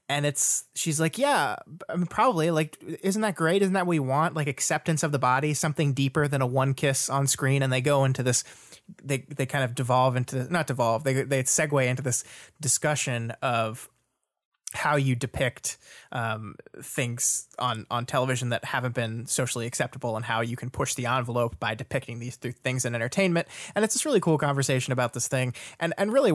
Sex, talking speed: male, 200 wpm